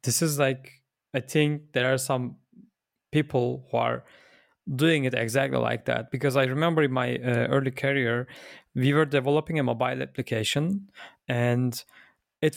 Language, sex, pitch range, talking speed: English, male, 125-155 Hz, 155 wpm